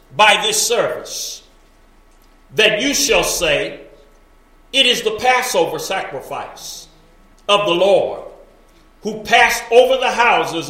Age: 40-59